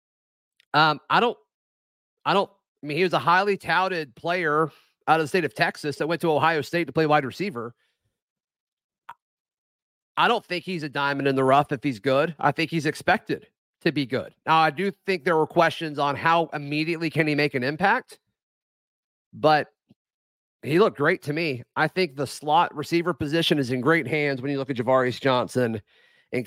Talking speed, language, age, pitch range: 195 wpm, English, 30-49, 135-170 Hz